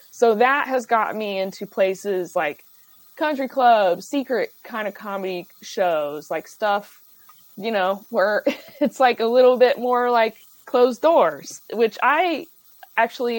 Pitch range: 185-250 Hz